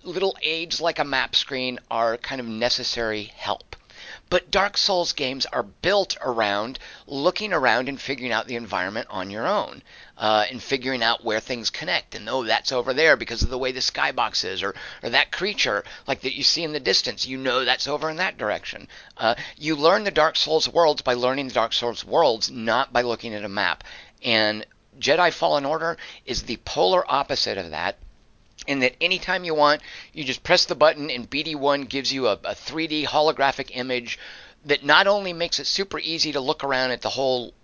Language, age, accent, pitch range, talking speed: English, 50-69, American, 120-155 Hz, 200 wpm